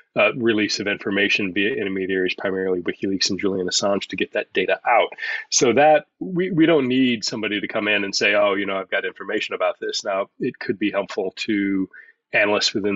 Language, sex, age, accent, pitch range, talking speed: English, male, 30-49, American, 95-120 Hz, 205 wpm